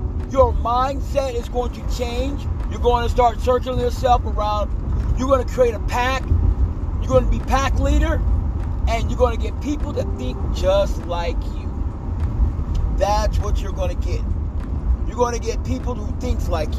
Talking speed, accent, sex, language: 180 wpm, American, male, English